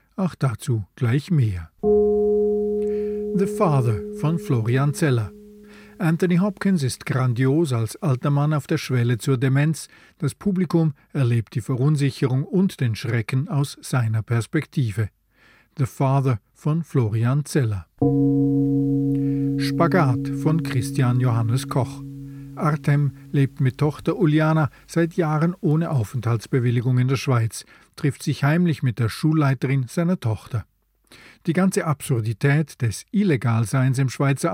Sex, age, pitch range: male, 50-69, 125-165 Hz